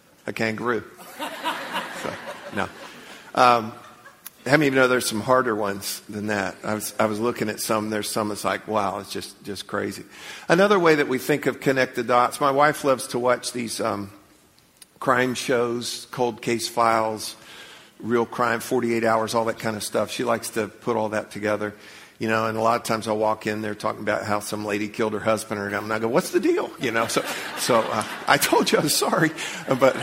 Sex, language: male, English